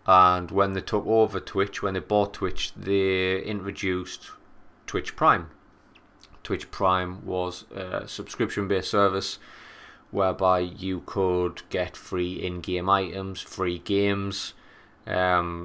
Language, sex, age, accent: English, male, 30-49, British